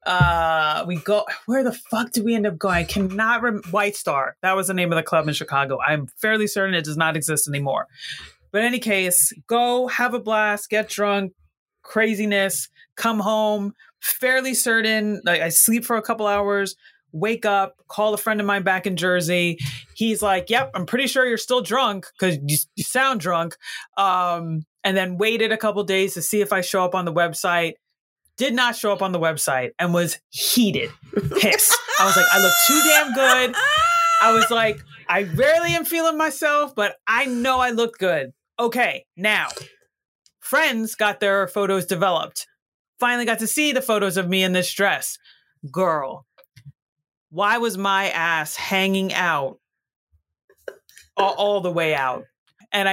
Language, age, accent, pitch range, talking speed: English, 30-49, American, 180-235 Hz, 180 wpm